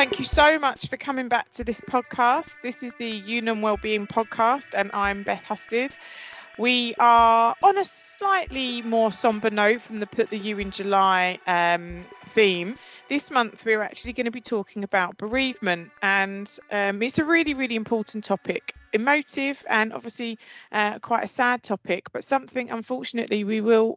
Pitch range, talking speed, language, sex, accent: 205-240 Hz, 170 wpm, English, female, British